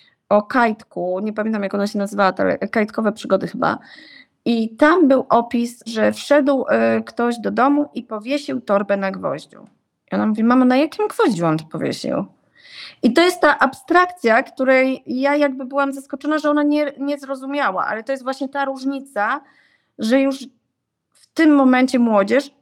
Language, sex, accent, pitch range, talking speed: Polish, female, native, 215-275 Hz, 165 wpm